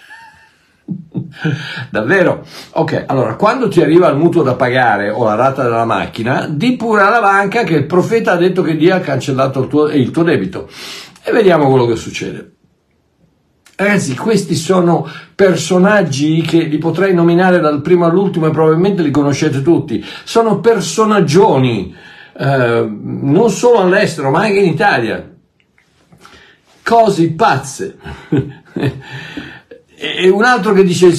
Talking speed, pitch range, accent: 140 wpm, 145-200 Hz, native